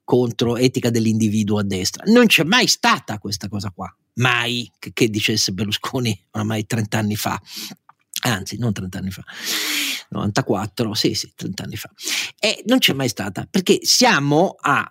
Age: 40-59